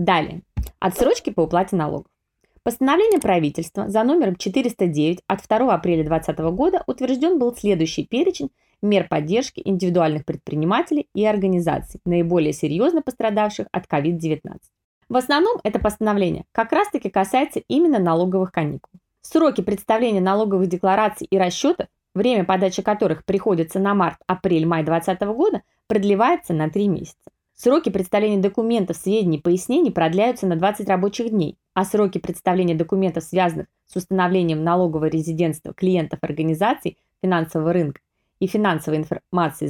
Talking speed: 130 wpm